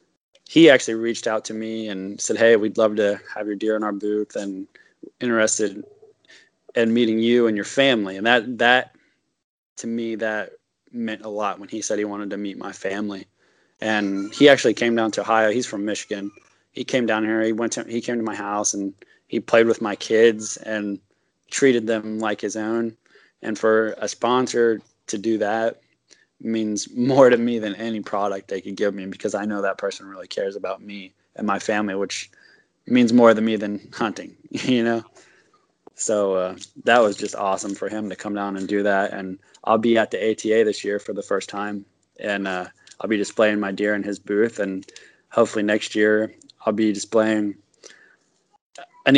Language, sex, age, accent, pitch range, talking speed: English, male, 20-39, American, 105-115 Hz, 195 wpm